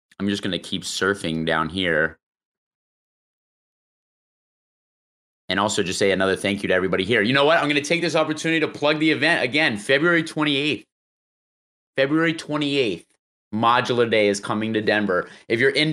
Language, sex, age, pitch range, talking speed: English, male, 30-49, 100-120 Hz, 170 wpm